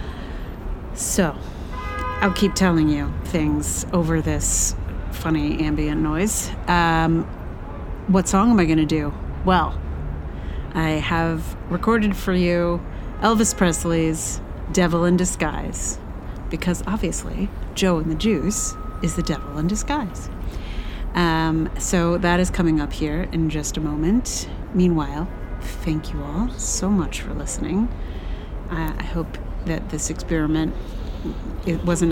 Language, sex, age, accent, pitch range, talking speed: English, female, 30-49, American, 155-195 Hz, 125 wpm